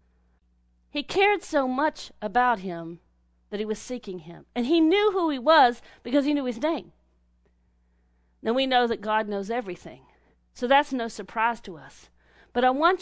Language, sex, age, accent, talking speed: English, female, 40-59, American, 175 wpm